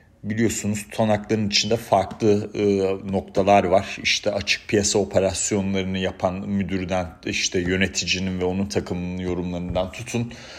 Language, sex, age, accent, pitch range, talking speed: Turkish, male, 40-59, native, 90-105 Hz, 115 wpm